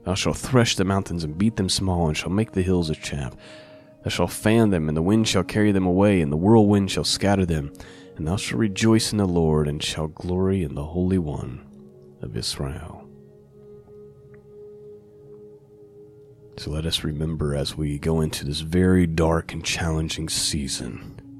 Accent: American